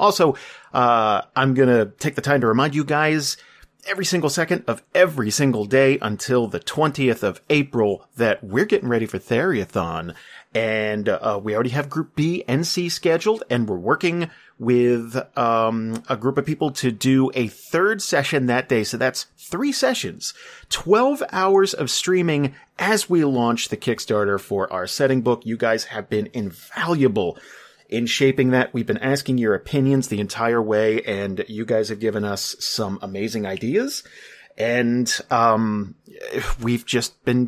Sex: male